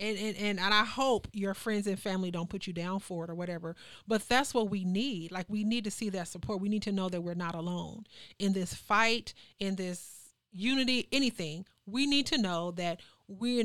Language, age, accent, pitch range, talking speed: English, 30-49, American, 185-225 Hz, 220 wpm